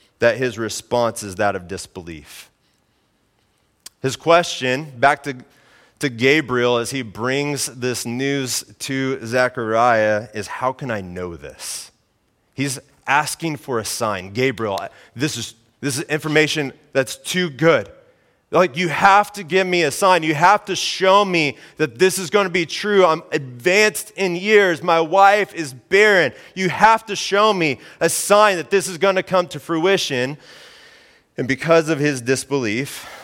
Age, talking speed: 30-49, 155 wpm